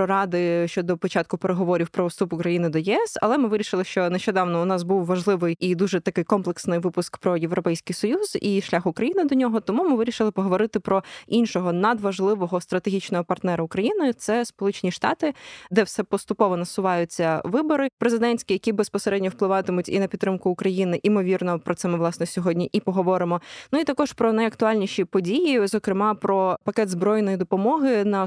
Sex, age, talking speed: female, 20-39, 165 wpm